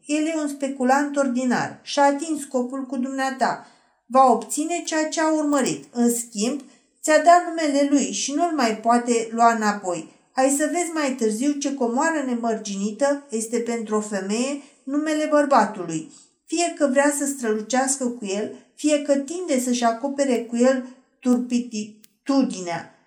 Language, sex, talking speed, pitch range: Romanian, female, 150 wpm, 230-285 Hz